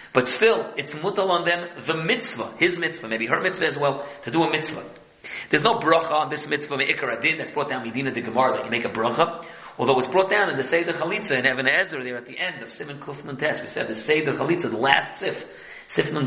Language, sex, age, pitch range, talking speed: English, male, 40-59, 145-190 Hz, 235 wpm